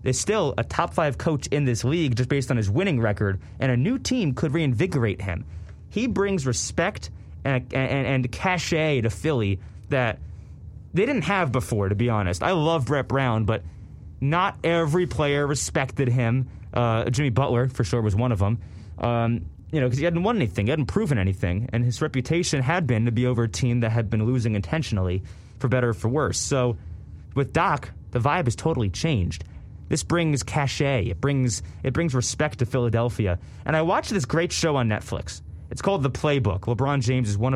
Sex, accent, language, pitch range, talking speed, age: male, American, English, 95-140 Hz, 195 wpm, 20-39